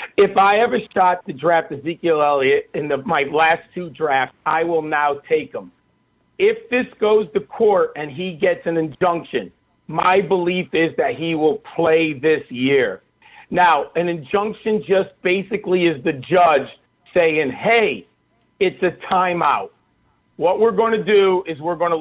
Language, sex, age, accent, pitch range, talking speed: English, male, 50-69, American, 160-200 Hz, 165 wpm